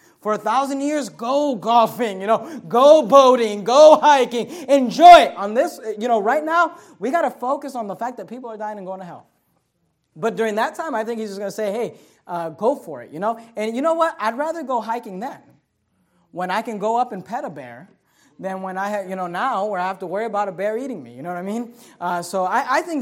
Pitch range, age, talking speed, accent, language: 180-245 Hz, 30-49, 255 wpm, American, English